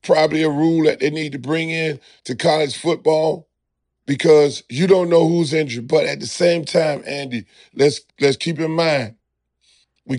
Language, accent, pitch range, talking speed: English, American, 150-180 Hz, 175 wpm